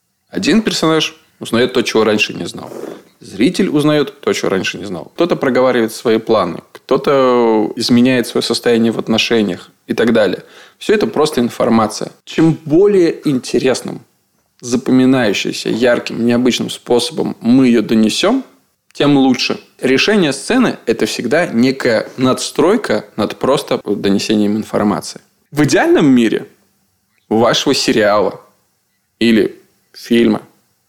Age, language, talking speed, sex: 20-39, Russian, 120 wpm, male